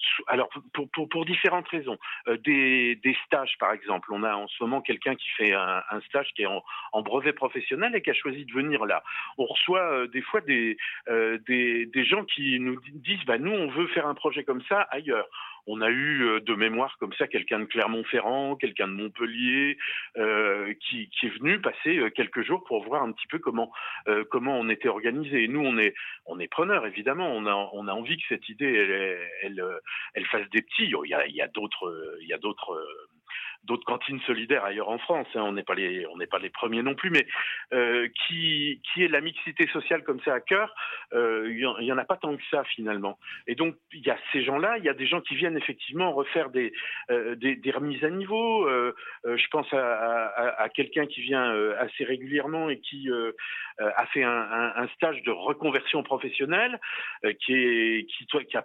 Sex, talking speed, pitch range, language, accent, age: male, 220 wpm, 120-160 Hz, French, French, 40-59